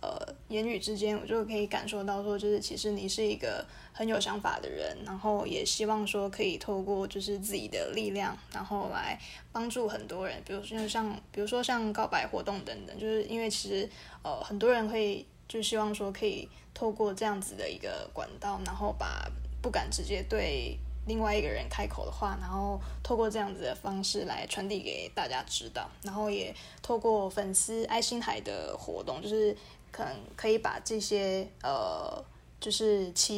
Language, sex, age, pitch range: Chinese, female, 20-39, 200-220 Hz